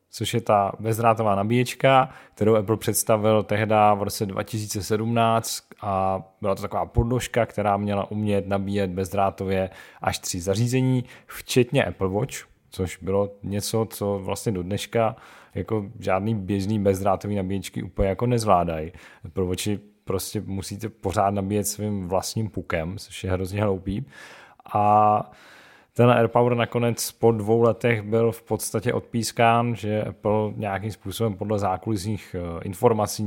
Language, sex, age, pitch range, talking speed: Czech, male, 40-59, 95-110 Hz, 135 wpm